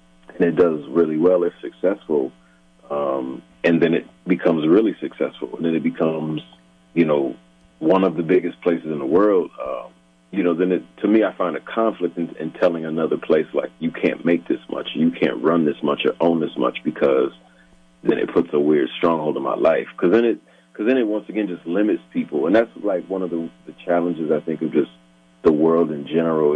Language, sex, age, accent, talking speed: English, male, 40-59, American, 215 wpm